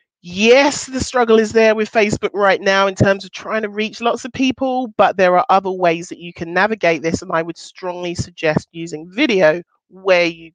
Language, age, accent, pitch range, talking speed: English, 30-49, British, 185-240 Hz, 210 wpm